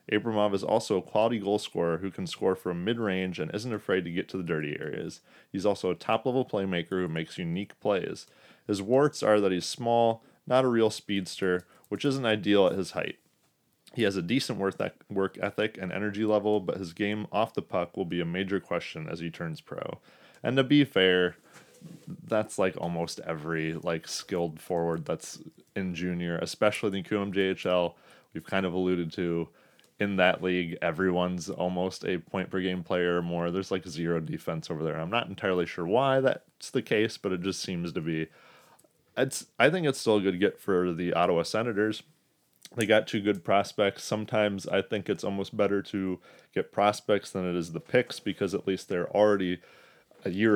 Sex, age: male, 30-49